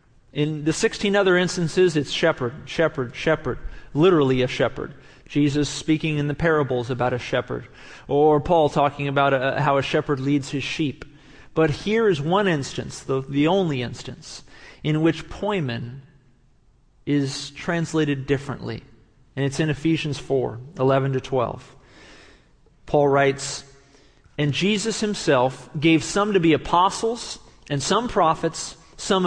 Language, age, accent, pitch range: English, 40-59, American, 135-175 Hz